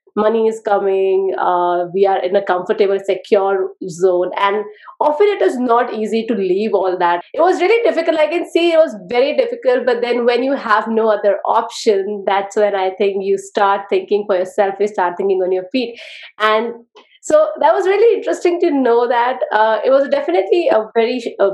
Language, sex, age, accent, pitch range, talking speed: English, female, 30-49, Indian, 200-275 Hz, 200 wpm